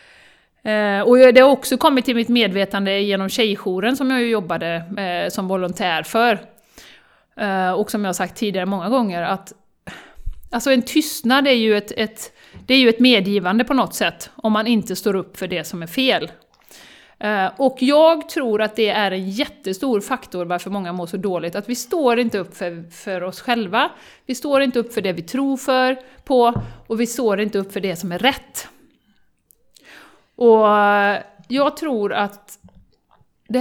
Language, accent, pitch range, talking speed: Swedish, native, 190-255 Hz, 185 wpm